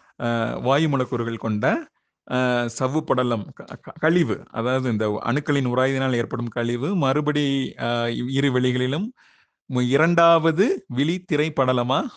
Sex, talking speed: male, 80 wpm